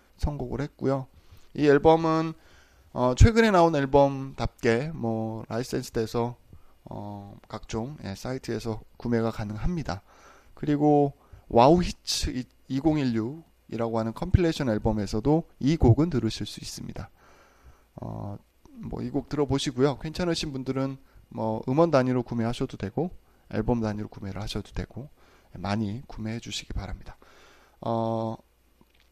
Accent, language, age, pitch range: native, Korean, 20-39, 110-140 Hz